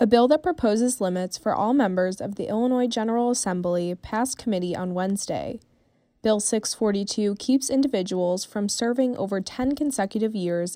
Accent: American